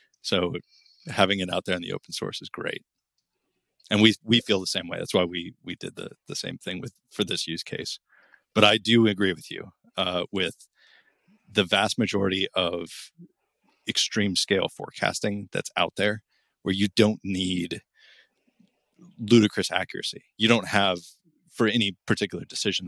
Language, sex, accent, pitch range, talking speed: English, male, American, 90-110 Hz, 165 wpm